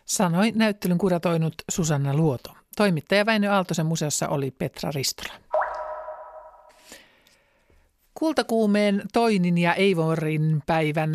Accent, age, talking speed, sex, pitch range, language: native, 60-79, 90 wpm, male, 160-205 Hz, Finnish